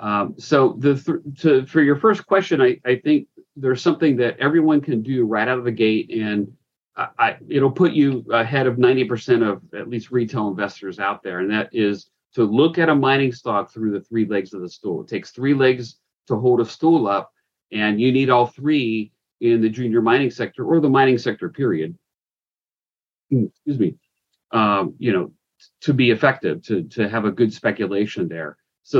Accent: American